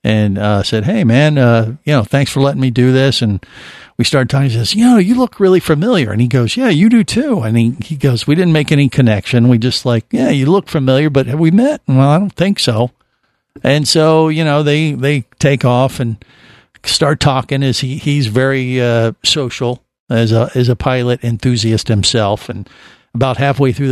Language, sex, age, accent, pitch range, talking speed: English, male, 50-69, American, 125-165 Hz, 215 wpm